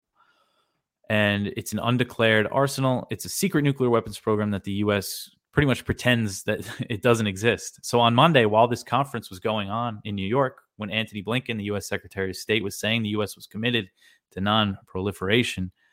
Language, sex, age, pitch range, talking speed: English, male, 20-39, 100-120 Hz, 190 wpm